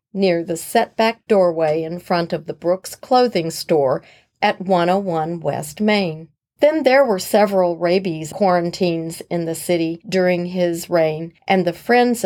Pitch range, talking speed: 170-210 Hz, 145 wpm